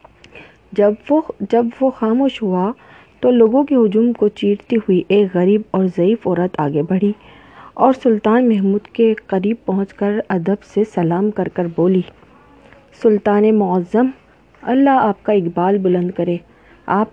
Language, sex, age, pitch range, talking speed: Urdu, female, 40-59, 190-235 Hz, 145 wpm